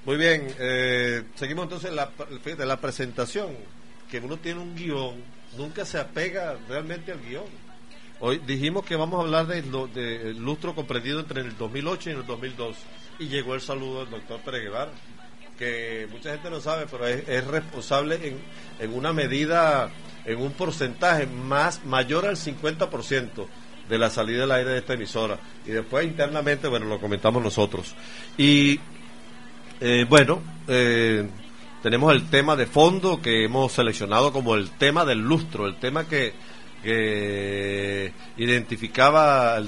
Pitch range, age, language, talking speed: 115-155 Hz, 50-69, Spanish, 155 wpm